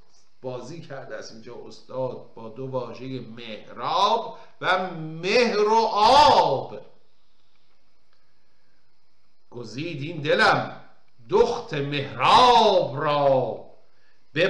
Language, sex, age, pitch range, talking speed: Persian, male, 50-69, 150-230 Hz, 85 wpm